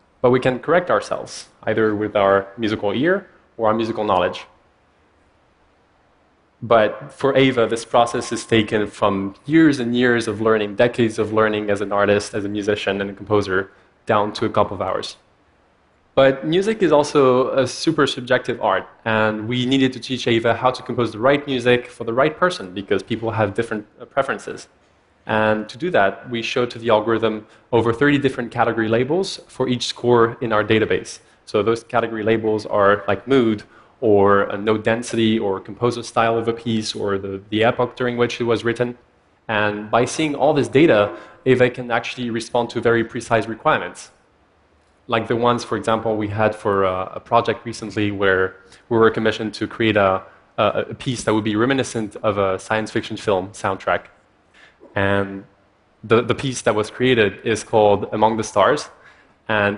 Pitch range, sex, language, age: 100-120 Hz, male, Chinese, 20-39